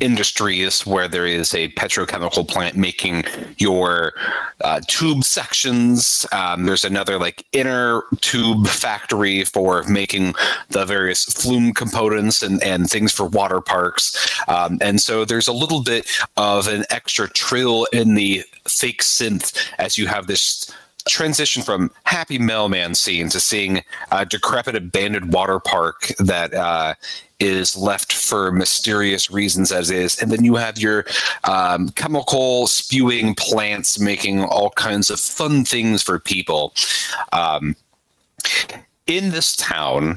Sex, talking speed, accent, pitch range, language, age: male, 135 wpm, American, 95-120 Hz, English, 30-49